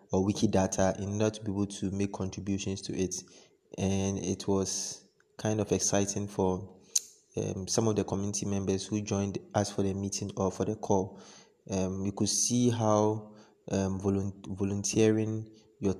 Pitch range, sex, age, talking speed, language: 95-110 Hz, male, 20-39, 160 wpm, English